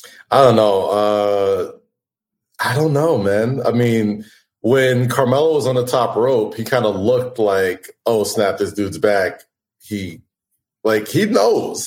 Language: English